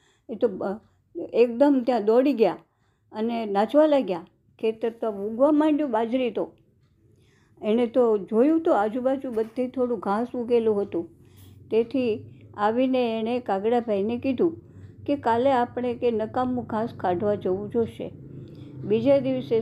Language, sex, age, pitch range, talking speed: Gujarati, male, 50-69, 200-255 Hz, 120 wpm